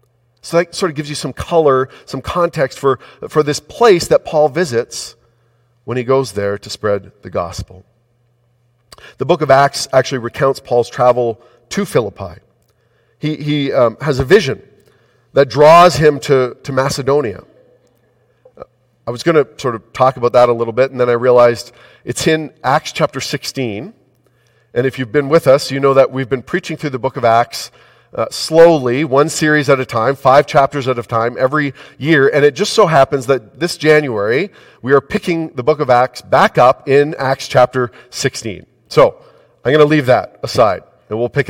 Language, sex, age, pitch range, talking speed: English, male, 40-59, 120-145 Hz, 190 wpm